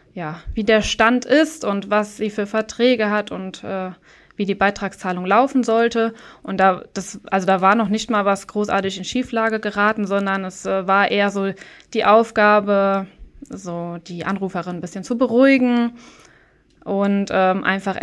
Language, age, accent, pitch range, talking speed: German, 20-39, German, 195-235 Hz, 165 wpm